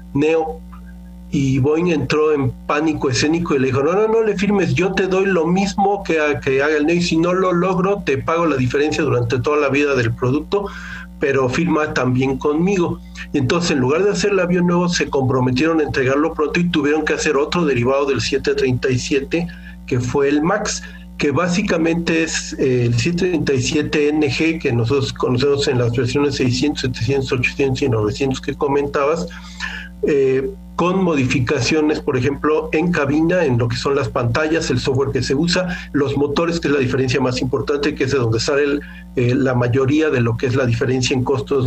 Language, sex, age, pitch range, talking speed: Spanish, male, 50-69, 130-165 Hz, 190 wpm